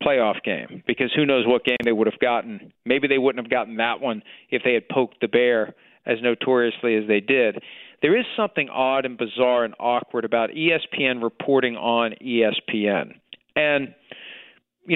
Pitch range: 120-150 Hz